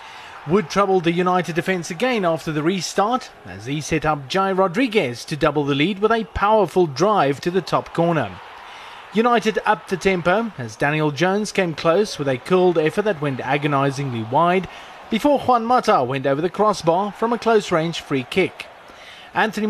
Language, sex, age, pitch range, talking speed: English, male, 30-49, 150-210 Hz, 175 wpm